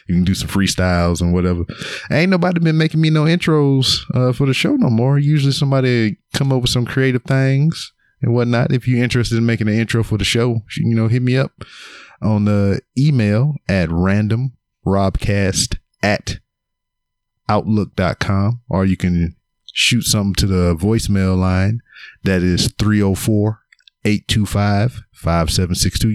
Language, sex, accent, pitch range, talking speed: English, male, American, 95-125 Hz, 150 wpm